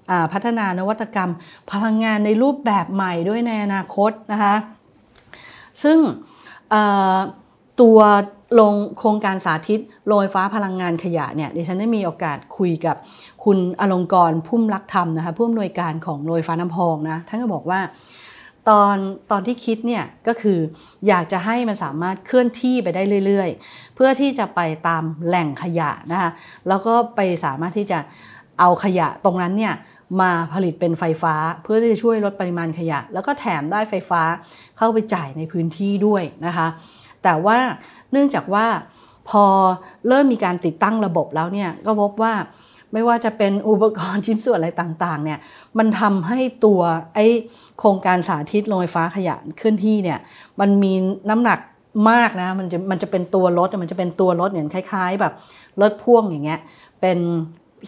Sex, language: female, English